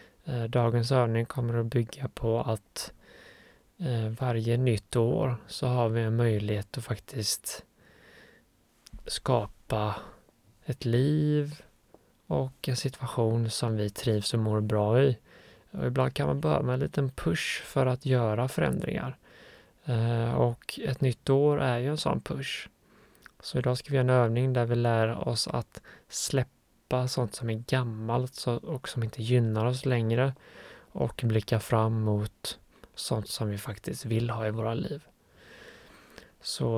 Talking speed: 145 wpm